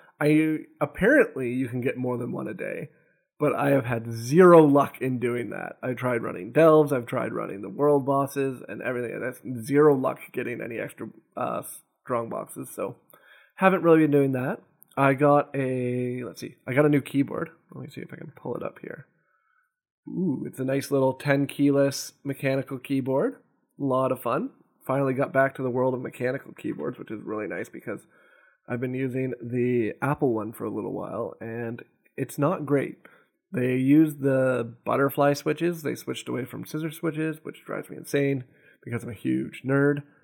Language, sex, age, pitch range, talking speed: English, male, 20-39, 125-150 Hz, 190 wpm